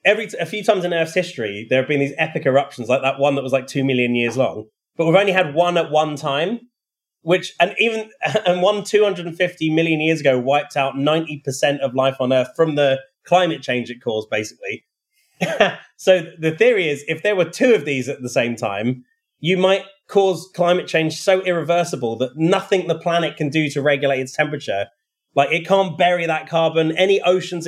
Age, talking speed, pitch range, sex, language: 30-49, 205 wpm, 140-185 Hz, male, Bulgarian